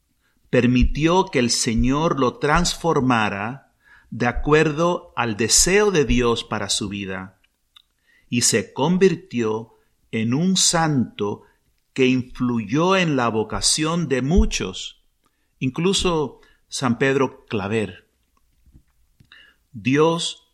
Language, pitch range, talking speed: Spanish, 115-155 Hz, 95 wpm